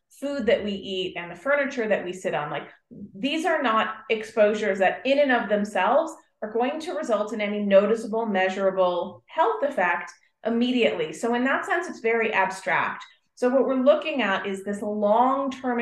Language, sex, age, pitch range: English, female, 30-49, 200-265 Hz